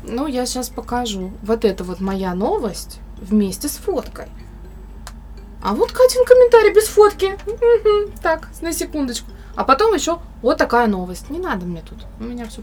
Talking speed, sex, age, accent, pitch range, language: 160 wpm, female, 20-39, native, 200-250 Hz, Russian